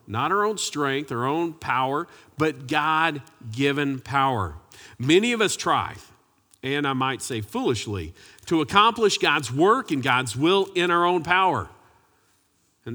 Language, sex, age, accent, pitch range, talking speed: English, male, 50-69, American, 115-160 Hz, 145 wpm